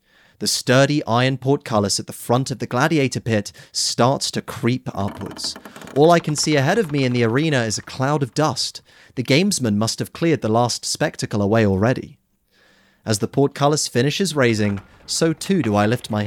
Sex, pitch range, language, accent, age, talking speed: male, 105-145 Hz, English, British, 30-49, 190 wpm